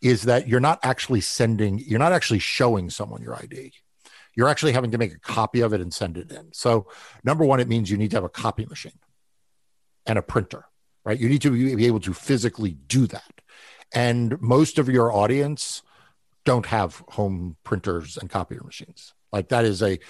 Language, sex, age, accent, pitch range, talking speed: English, male, 50-69, American, 105-130 Hz, 200 wpm